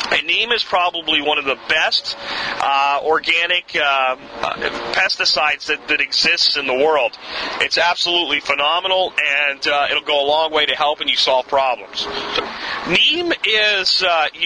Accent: American